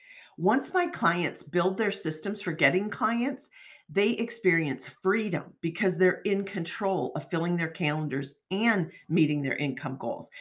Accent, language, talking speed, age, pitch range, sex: American, English, 145 wpm, 40-59, 145-200 Hz, female